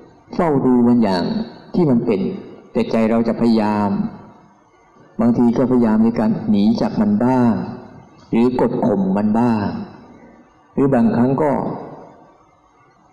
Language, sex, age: Thai, male, 60-79